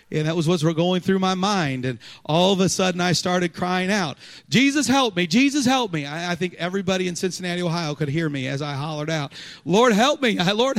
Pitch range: 130-170 Hz